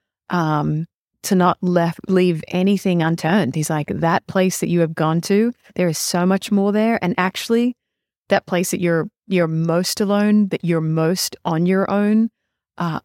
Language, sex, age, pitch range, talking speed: English, female, 30-49, 155-195 Hz, 175 wpm